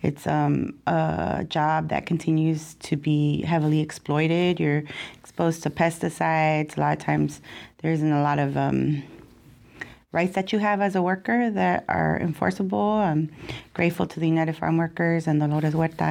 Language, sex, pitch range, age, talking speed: English, female, 155-175 Hz, 30-49, 165 wpm